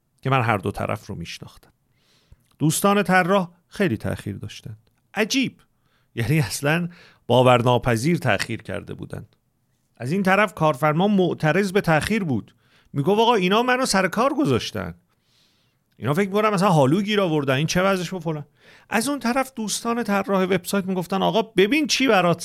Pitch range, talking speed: 120-195 Hz, 145 wpm